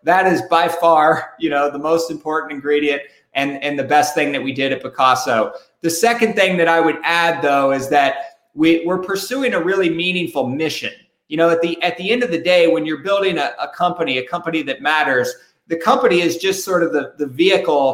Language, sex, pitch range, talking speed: English, male, 155-190 Hz, 220 wpm